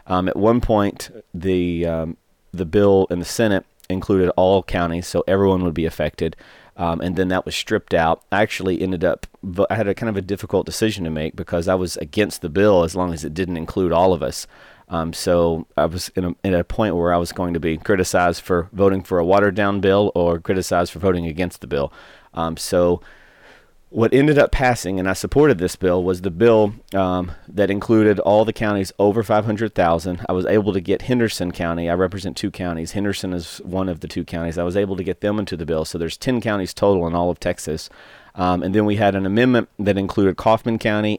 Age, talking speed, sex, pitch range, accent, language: 30-49, 225 wpm, male, 85-100 Hz, American, English